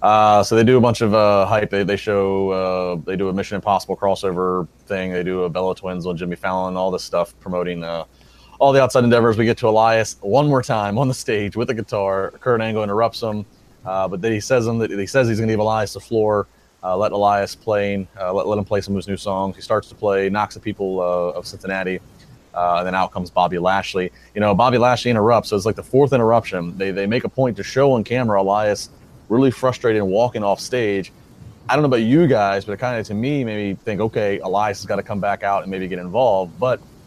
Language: English